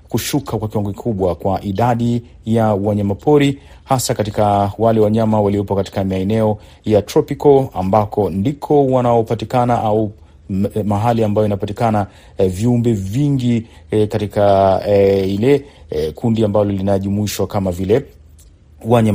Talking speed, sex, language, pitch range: 120 wpm, male, Swahili, 100-120 Hz